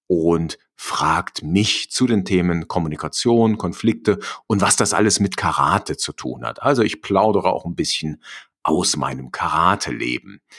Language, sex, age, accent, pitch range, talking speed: German, male, 50-69, German, 85-120 Hz, 155 wpm